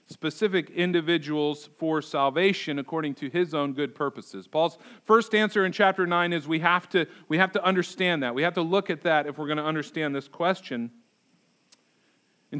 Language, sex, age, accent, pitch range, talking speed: English, male, 40-59, American, 145-185 Hz, 185 wpm